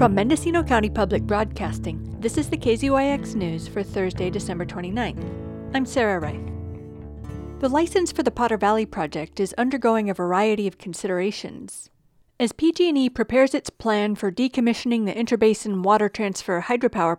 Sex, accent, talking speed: female, American, 145 wpm